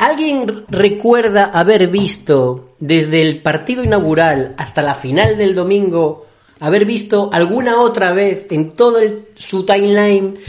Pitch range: 140-195 Hz